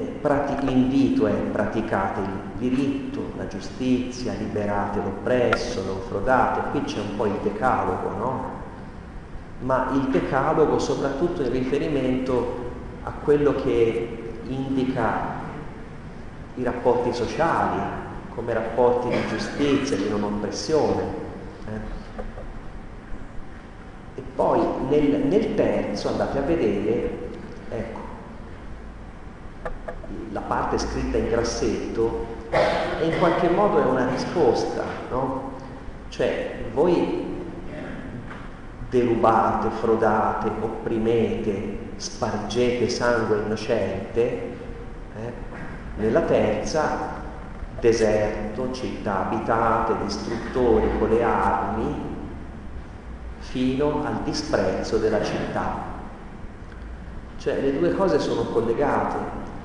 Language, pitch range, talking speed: Italian, 100-125 Hz, 90 wpm